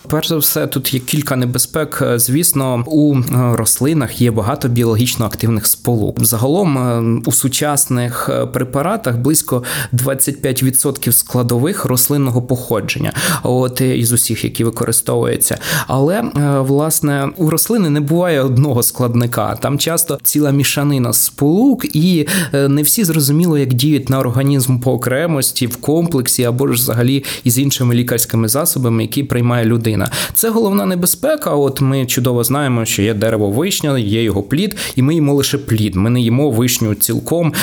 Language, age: Ukrainian, 20-39